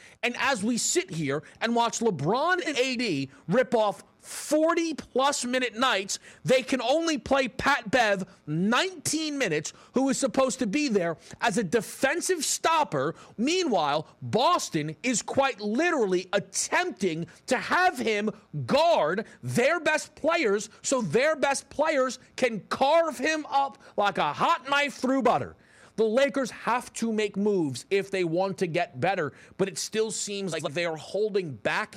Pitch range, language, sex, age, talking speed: 155-255 Hz, English, male, 40-59, 150 wpm